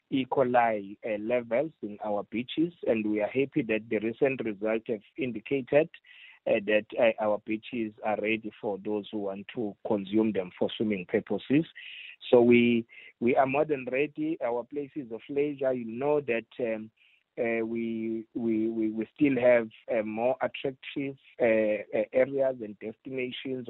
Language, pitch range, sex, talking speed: English, 110-135 Hz, male, 155 wpm